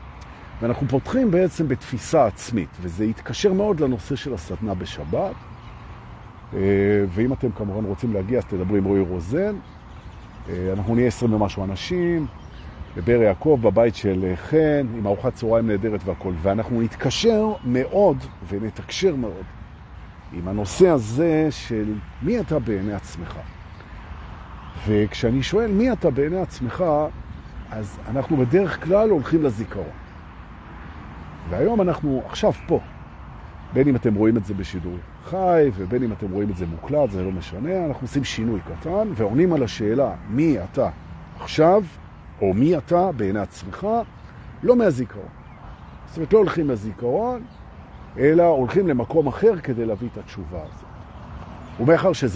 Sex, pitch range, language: male, 95-150 Hz, Hebrew